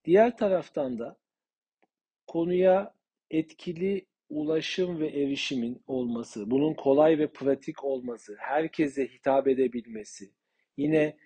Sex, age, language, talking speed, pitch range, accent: male, 50-69, Turkish, 95 wpm, 130-155 Hz, native